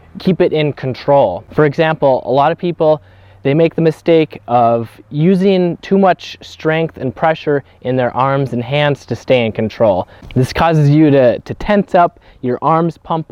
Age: 20-39